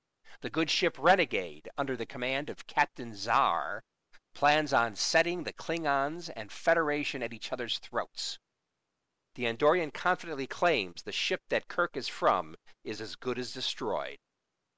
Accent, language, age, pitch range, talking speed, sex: American, English, 50-69, 120-160 Hz, 145 wpm, male